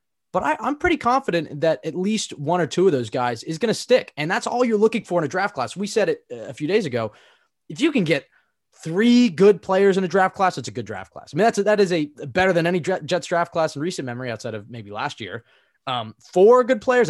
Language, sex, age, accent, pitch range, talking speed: English, male, 20-39, American, 120-185 Hz, 265 wpm